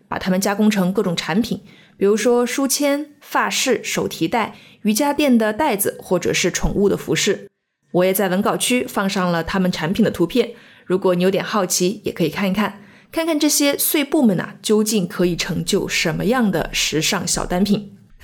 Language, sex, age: Chinese, female, 20-39